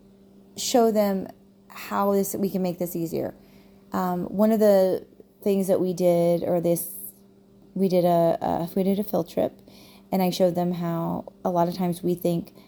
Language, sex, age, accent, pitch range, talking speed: English, female, 20-39, American, 165-195 Hz, 185 wpm